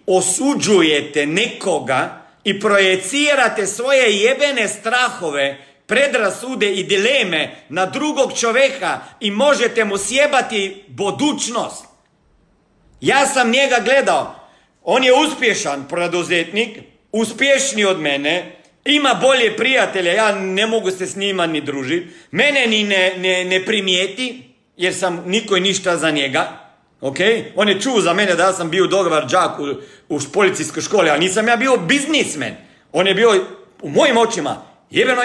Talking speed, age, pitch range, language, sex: 135 wpm, 40-59, 185-265 Hz, Croatian, male